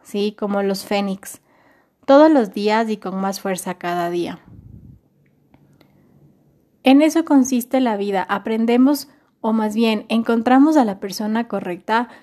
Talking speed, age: 130 wpm, 20-39